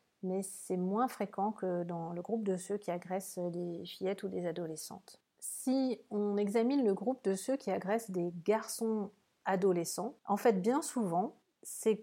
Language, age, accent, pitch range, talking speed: French, 40-59, French, 185-235 Hz, 170 wpm